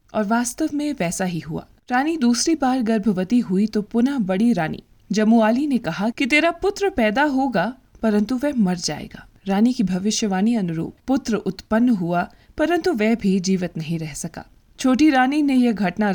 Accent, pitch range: native, 185-250 Hz